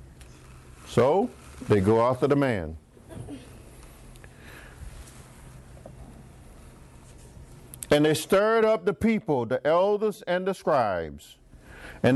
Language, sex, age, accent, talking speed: English, male, 50-69, American, 90 wpm